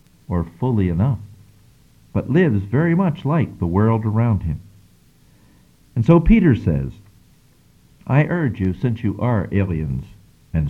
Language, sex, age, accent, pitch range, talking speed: English, male, 50-69, American, 95-140 Hz, 135 wpm